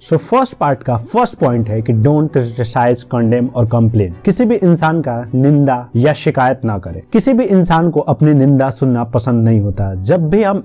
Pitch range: 120-160 Hz